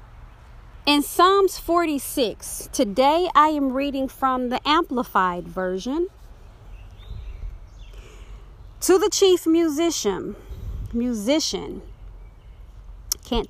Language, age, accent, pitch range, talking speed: English, 40-59, American, 205-295 Hz, 75 wpm